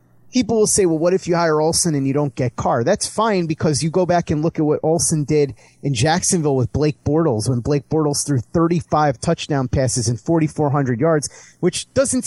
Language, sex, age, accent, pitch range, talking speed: English, male, 30-49, American, 145-175 Hz, 210 wpm